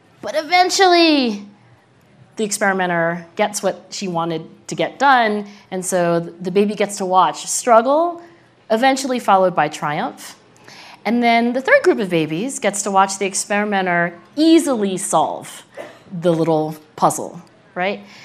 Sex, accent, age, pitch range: female, American, 40-59, 170-235 Hz